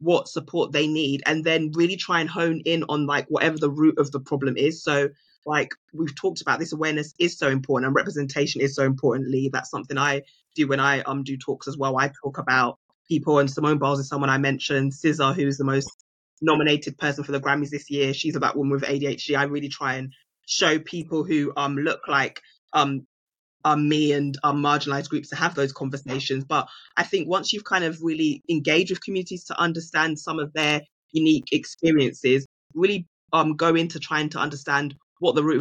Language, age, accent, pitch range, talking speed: English, 20-39, British, 140-160 Hz, 205 wpm